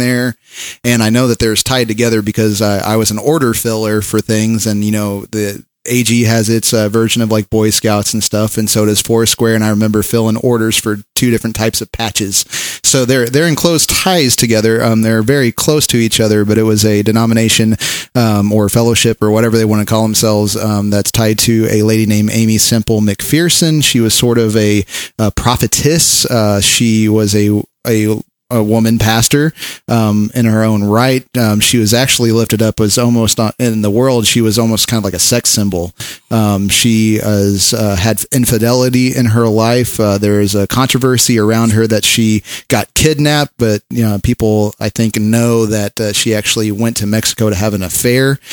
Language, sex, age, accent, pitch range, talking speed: English, male, 30-49, American, 105-120 Hz, 205 wpm